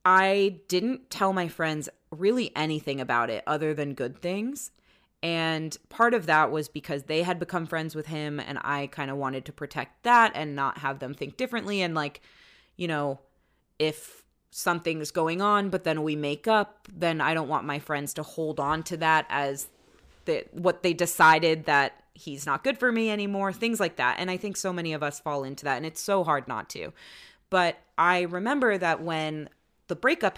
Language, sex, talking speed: English, female, 200 wpm